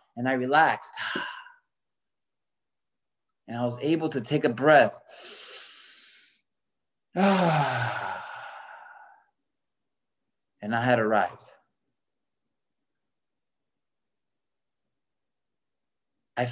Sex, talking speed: male, 60 wpm